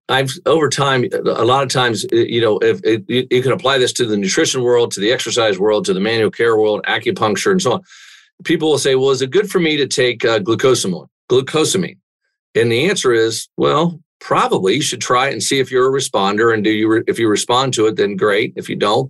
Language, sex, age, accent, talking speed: English, male, 50-69, American, 235 wpm